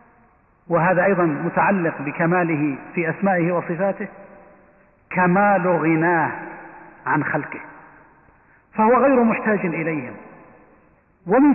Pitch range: 180-235 Hz